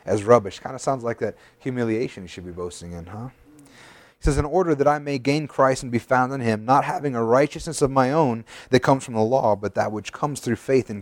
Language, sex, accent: English, male, American